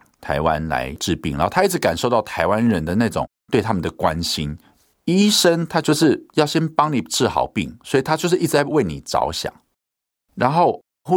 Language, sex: Chinese, male